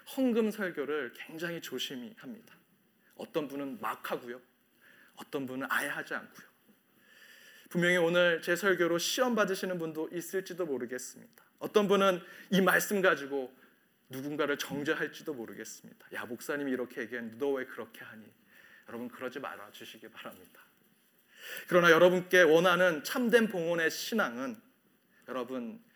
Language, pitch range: Korean, 140-205 Hz